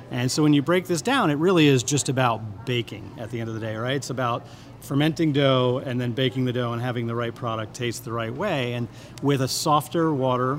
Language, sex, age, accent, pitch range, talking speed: English, male, 40-59, American, 120-140 Hz, 245 wpm